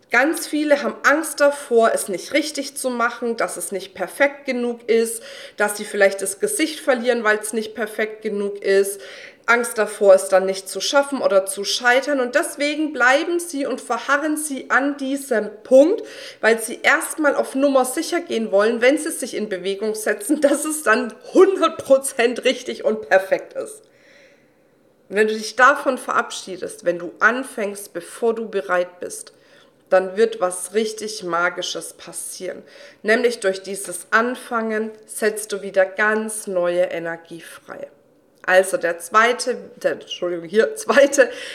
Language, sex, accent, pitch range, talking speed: German, female, German, 195-280 Hz, 155 wpm